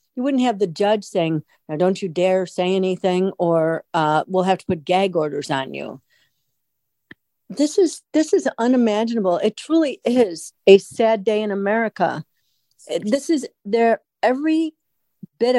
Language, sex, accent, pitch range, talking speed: English, female, American, 175-225 Hz, 155 wpm